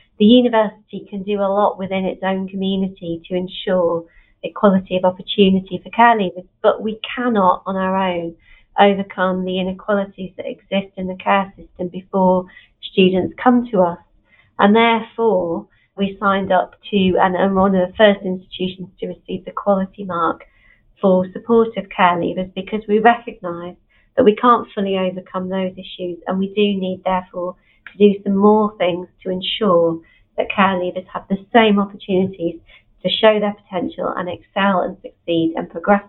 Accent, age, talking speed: British, 40-59, 165 wpm